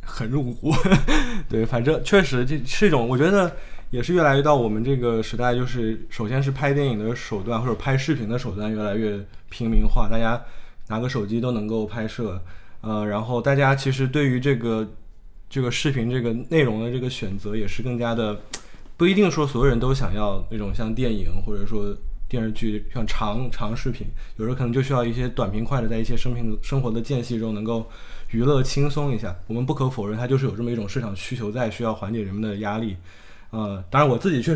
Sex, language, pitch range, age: male, Chinese, 110-130 Hz, 20-39